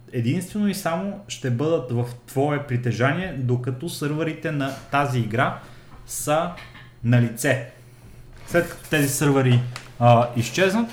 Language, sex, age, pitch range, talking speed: Bulgarian, male, 30-49, 120-140 Hz, 120 wpm